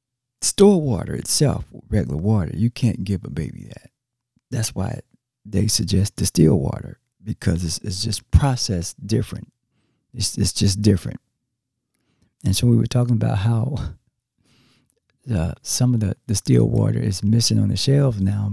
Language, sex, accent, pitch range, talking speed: English, male, American, 105-135 Hz, 155 wpm